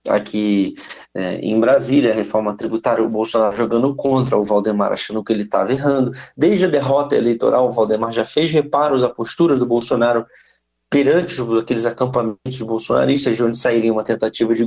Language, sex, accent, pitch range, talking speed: Portuguese, male, Brazilian, 110-140 Hz, 170 wpm